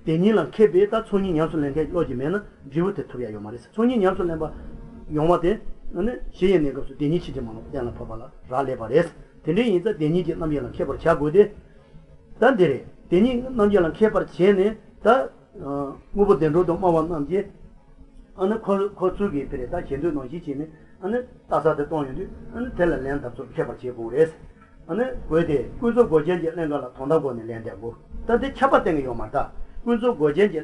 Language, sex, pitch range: English, male, 130-190 Hz